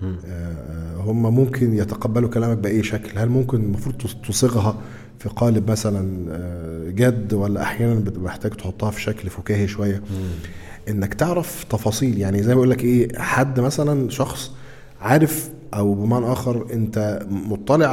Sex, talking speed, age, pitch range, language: male, 130 wpm, 40-59, 100-130 Hz, Arabic